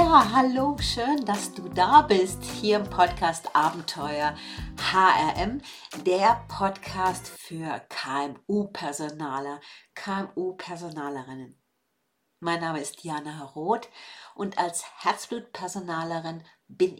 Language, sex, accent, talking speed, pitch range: German, female, German, 90 wpm, 165-220 Hz